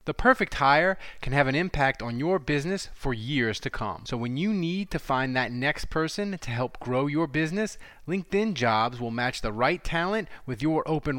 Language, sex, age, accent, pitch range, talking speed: English, male, 30-49, American, 130-170 Hz, 205 wpm